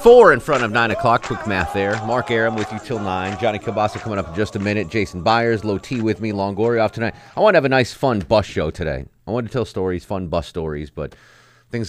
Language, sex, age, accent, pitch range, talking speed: English, male, 30-49, American, 85-110 Hz, 260 wpm